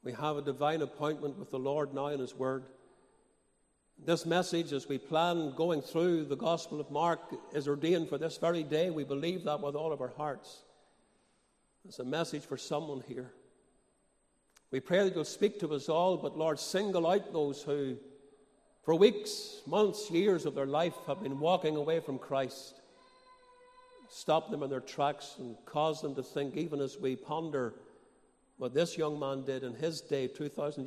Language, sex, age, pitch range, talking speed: English, male, 60-79, 140-170 Hz, 180 wpm